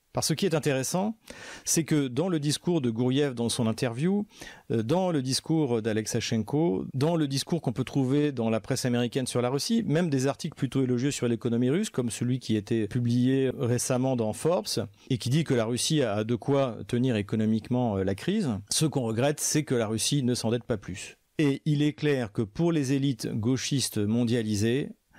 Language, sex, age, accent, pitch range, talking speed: French, male, 40-59, French, 115-145 Hz, 200 wpm